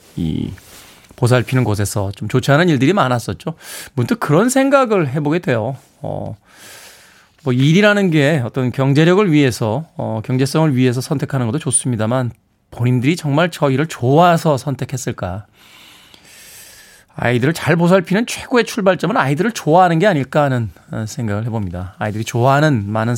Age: 20-39